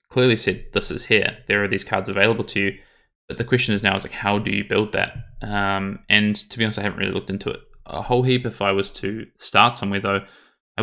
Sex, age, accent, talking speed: male, 20-39, Australian, 255 wpm